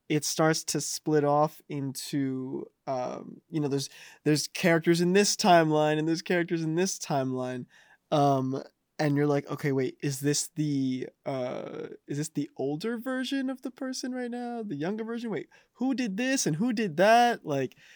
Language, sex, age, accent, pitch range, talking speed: English, male, 20-39, American, 135-190 Hz, 175 wpm